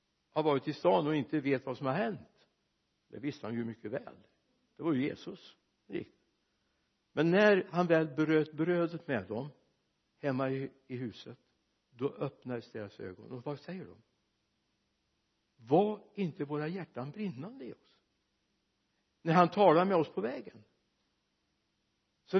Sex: male